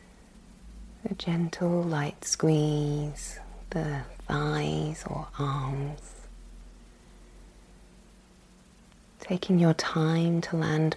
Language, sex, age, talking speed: English, female, 30-49, 65 wpm